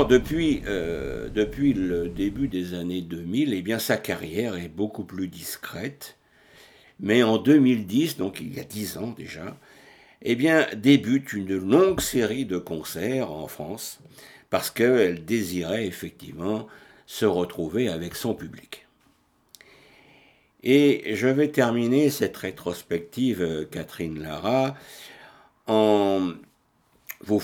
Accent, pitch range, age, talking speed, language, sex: French, 90-120 Hz, 60-79, 120 wpm, French, male